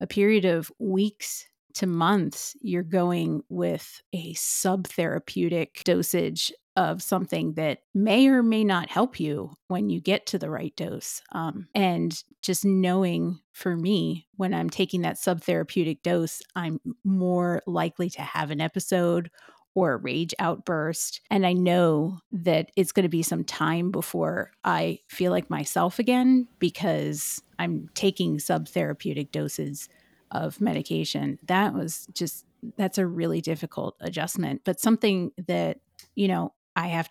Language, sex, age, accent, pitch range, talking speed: English, female, 30-49, American, 160-195 Hz, 145 wpm